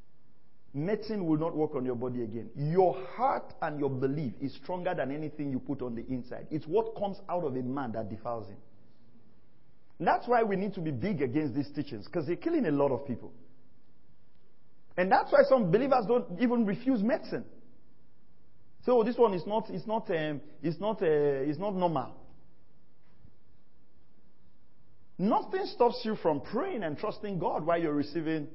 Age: 40-59